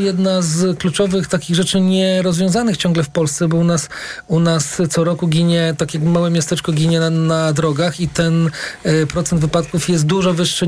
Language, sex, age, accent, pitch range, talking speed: Polish, male, 40-59, native, 165-190 Hz, 180 wpm